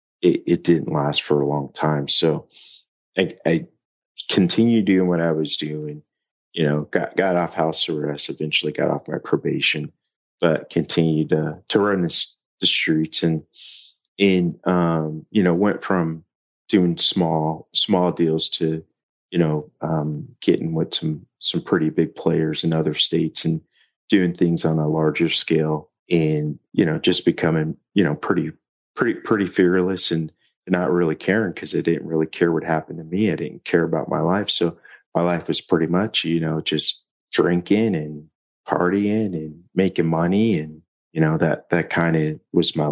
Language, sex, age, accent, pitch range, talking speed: English, male, 30-49, American, 80-90 Hz, 170 wpm